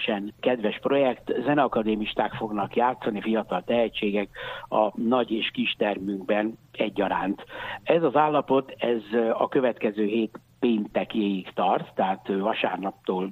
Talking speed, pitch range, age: 105 wpm, 110-135 Hz, 60-79